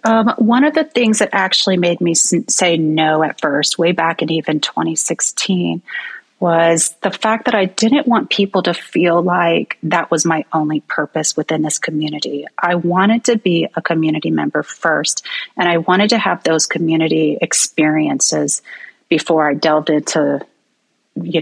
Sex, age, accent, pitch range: female, 30-49, American, 160-205 Hz